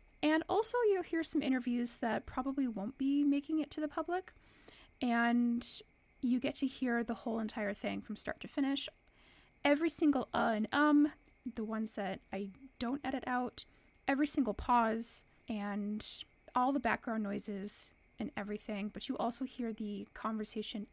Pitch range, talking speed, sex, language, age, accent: 215-275 Hz, 160 wpm, female, English, 20-39, American